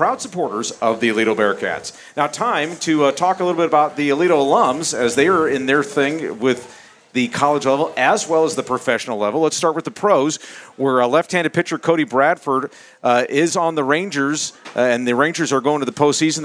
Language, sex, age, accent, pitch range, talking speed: English, male, 40-59, American, 125-155 Hz, 215 wpm